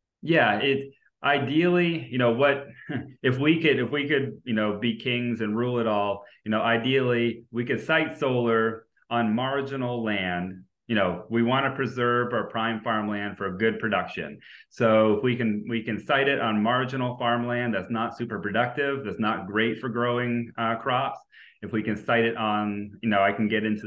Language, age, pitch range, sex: English, 30-49, 100-120 Hz, male